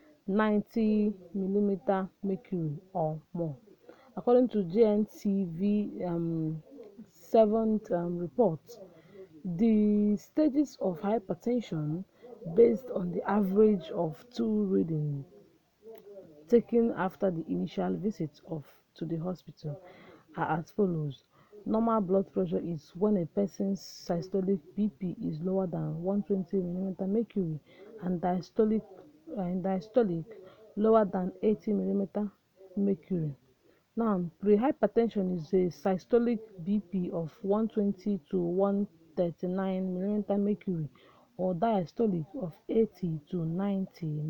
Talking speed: 105 wpm